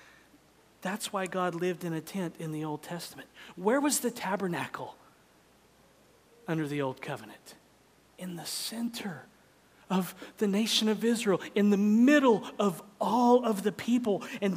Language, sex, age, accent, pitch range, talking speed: English, male, 40-59, American, 155-225 Hz, 150 wpm